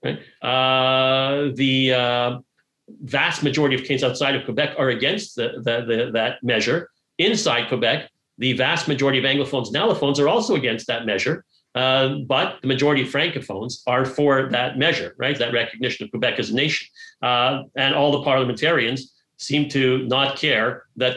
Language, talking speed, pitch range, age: English, 170 wpm, 130-150 Hz, 50-69